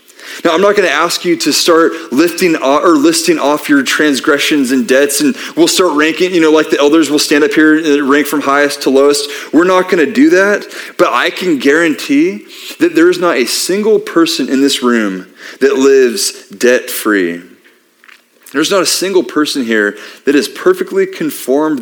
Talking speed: 185 wpm